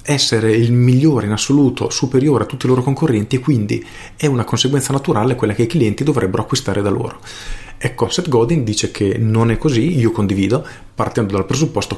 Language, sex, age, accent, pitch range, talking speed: Italian, male, 40-59, native, 105-135 Hz, 190 wpm